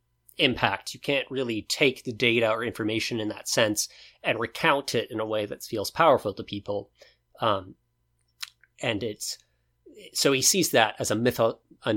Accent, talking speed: American, 170 wpm